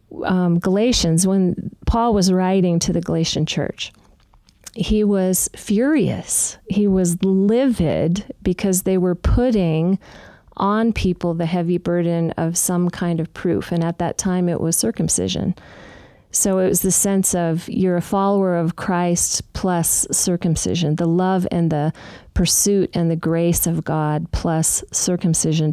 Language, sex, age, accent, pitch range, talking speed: English, female, 40-59, American, 165-190 Hz, 145 wpm